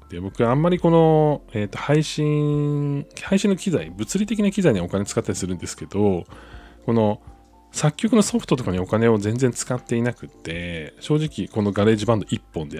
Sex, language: male, Japanese